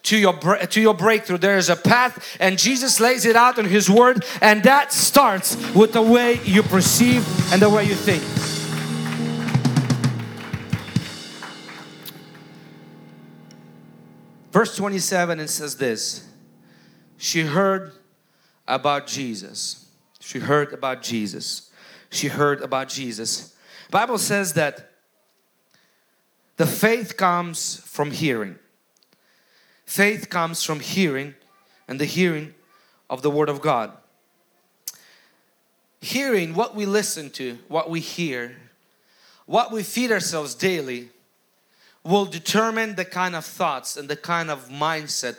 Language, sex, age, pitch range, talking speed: English, male, 40-59, 140-205 Hz, 120 wpm